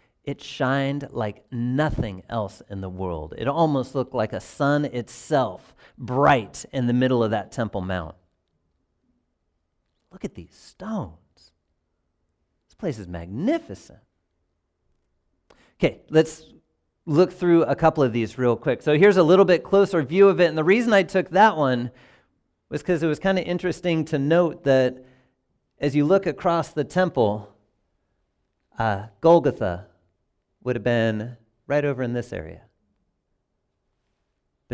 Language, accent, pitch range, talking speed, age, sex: English, American, 105-175 Hz, 145 wpm, 40-59, male